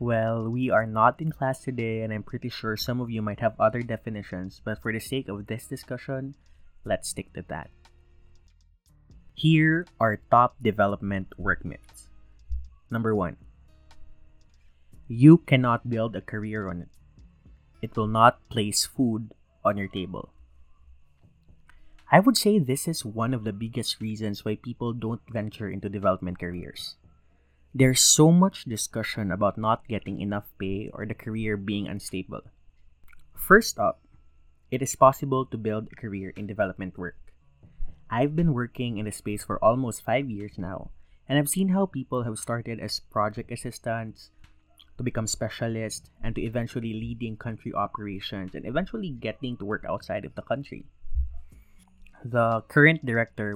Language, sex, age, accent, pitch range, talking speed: English, male, 20-39, Filipino, 90-120 Hz, 155 wpm